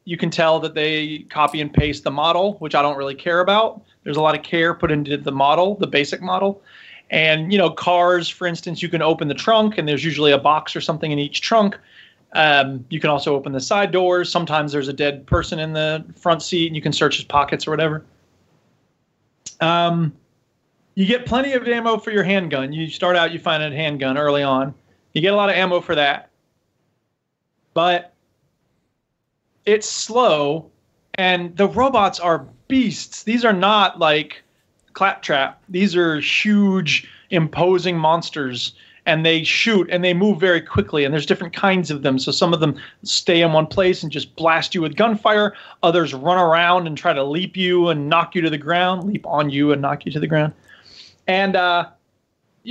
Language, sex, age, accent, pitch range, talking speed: English, male, 30-49, American, 150-190 Hz, 195 wpm